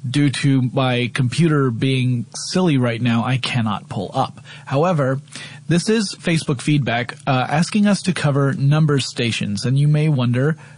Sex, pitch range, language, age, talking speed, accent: male, 125-150 Hz, English, 30-49, 155 wpm, American